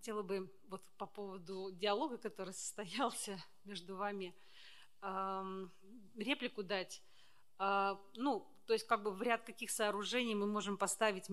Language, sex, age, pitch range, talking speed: Russian, female, 30-49, 195-220 Hz, 130 wpm